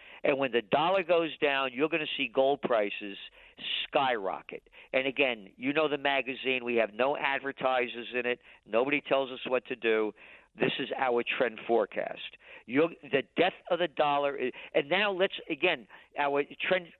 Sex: male